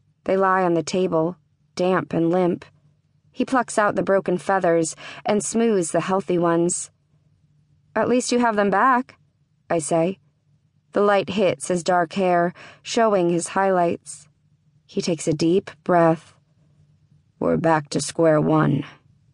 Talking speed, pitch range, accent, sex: 145 wpm, 150-190 Hz, American, female